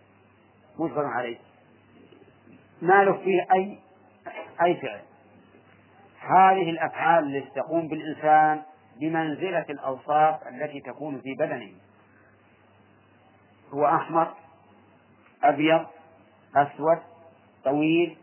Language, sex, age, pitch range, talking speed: Arabic, male, 40-59, 110-160 Hz, 80 wpm